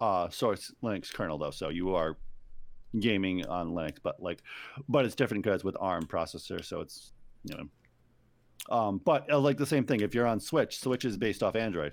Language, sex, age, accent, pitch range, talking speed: English, male, 40-59, American, 95-130 Hz, 205 wpm